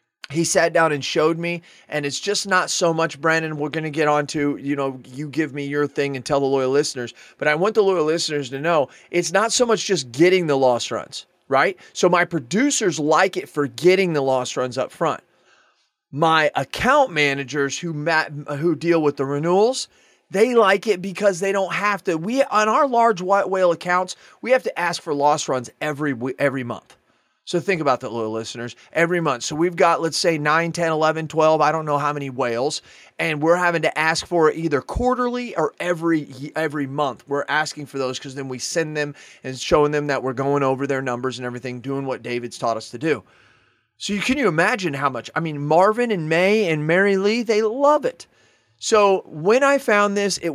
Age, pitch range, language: 30-49, 140-180 Hz, English